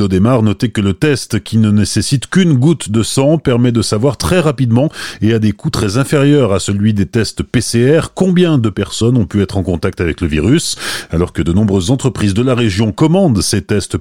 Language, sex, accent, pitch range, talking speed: French, male, French, 100-135 Hz, 210 wpm